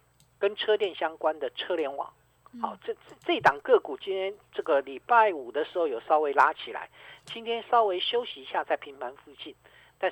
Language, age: Chinese, 50-69